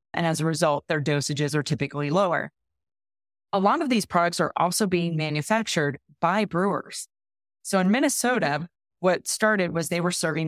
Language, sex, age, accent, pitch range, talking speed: English, female, 30-49, American, 155-195 Hz, 165 wpm